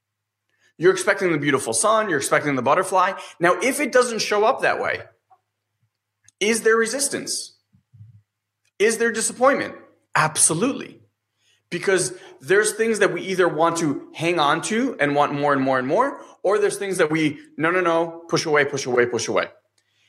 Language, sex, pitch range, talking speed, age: English, male, 130-210 Hz, 165 wpm, 30-49